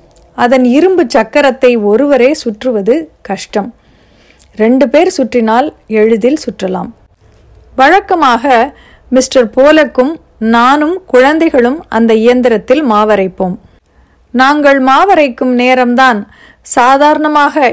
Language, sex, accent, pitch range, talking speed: Tamil, female, native, 220-275 Hz, 80 wpm